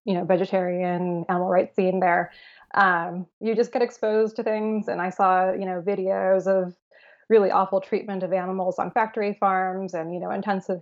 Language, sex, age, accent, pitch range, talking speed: English, female, 20-39, American, 190-220 Hz, 185 wpm